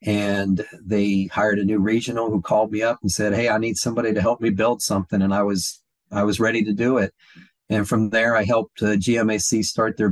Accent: American